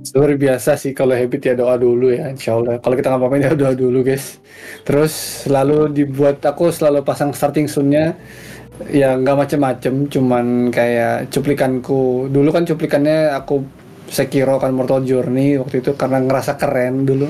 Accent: native